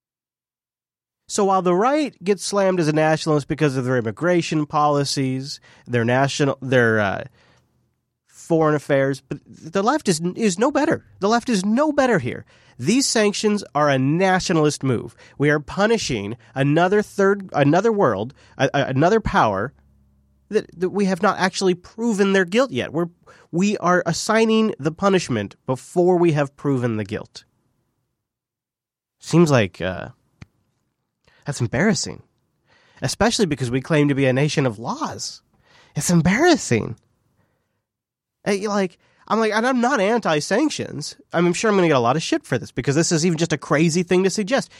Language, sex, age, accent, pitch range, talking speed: English, male, 30-49, American, 130-190 Hz, 160 wpm